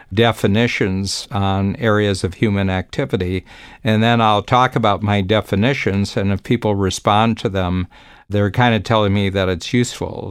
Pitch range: 95-115 Hz